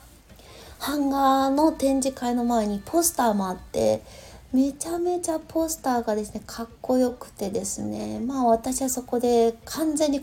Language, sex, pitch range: Japanese, female, 215-305 Hz